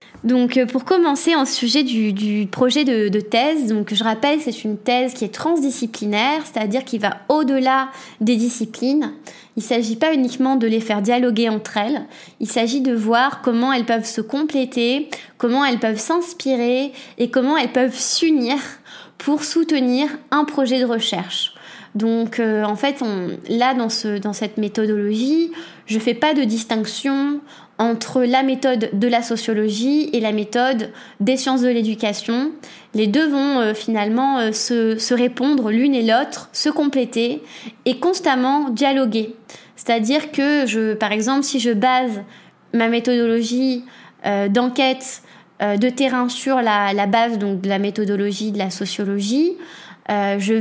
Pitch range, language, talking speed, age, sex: 220-265 Hz, French, 160 wpm, 20-39, female